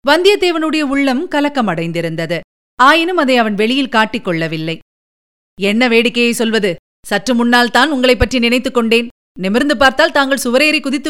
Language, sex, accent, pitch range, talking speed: Tamil, female, native, 225-270 Hz, 130 wpm